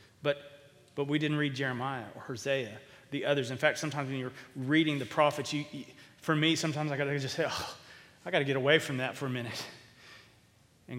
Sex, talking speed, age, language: male, 195 wpm, 30-49, English